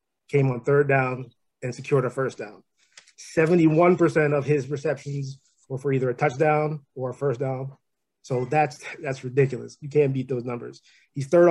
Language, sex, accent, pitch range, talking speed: English, male, American, 130-155 Hz, 170 wpm